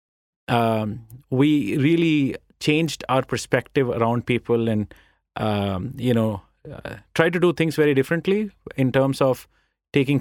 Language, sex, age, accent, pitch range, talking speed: English, male, 30-49, Indian, 115-145 Hz, 130 wpm